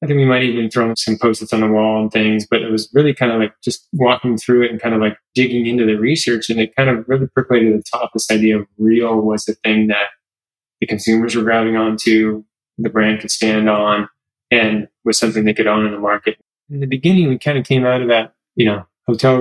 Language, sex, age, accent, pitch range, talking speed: English, male, 20-39, American, 105-120 Hz, 255 wpm